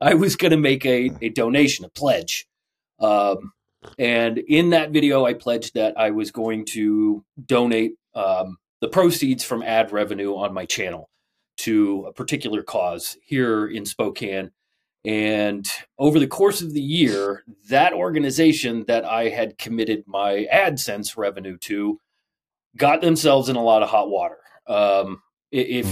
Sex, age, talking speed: male, 30-49, 150 wpm